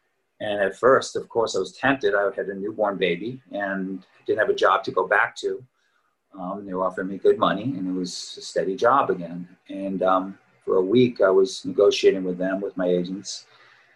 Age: 30-49